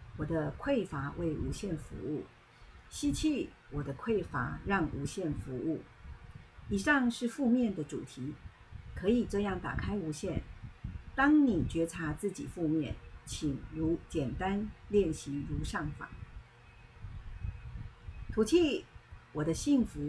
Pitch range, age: 145-235 Hz, 50-69